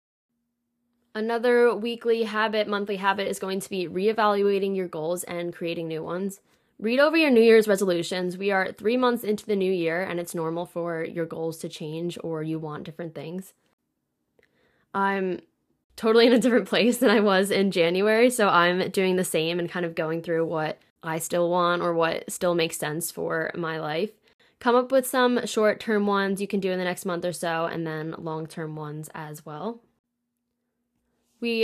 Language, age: English, 10-29